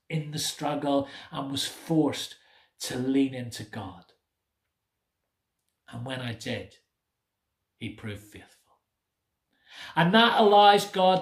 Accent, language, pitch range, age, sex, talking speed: British, English, 110-160 Hz, 40-59, male, 110 wpm